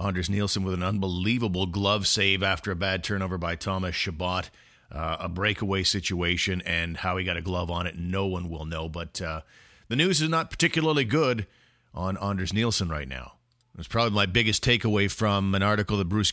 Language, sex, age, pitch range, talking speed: English, male, 50-69, 95-110 Hz, 195 wpm